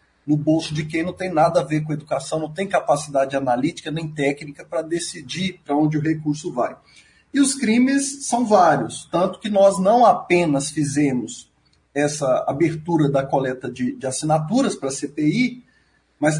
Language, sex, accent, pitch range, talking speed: Portuguese, male, Brazilian, 155-190 Hz, 165 wpm